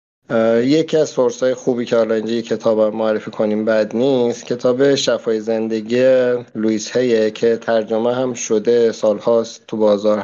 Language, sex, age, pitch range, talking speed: Persian, male, 50-69, 110-130 Hz, 140 wpm